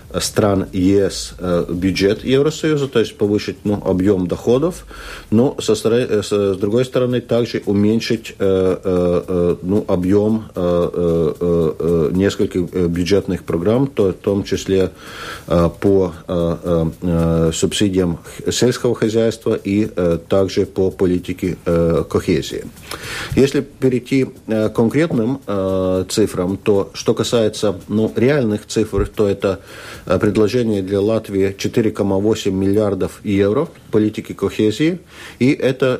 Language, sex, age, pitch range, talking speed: Russian, male, 50-69, 90-110 Hz, 95 wpm